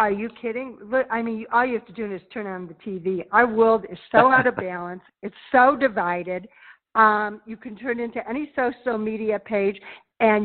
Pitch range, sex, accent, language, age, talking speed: 210-250 Hz, female, American, English, 60-79, 200 wpm